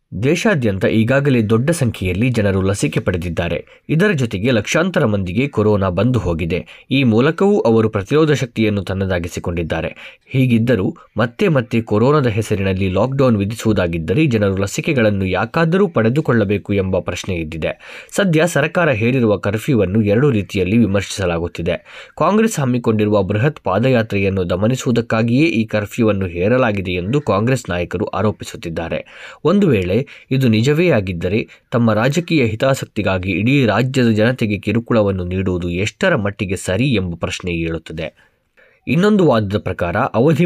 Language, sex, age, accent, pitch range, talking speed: Kannada, male, 20-39, native, 95-130 Hz, 115 wpm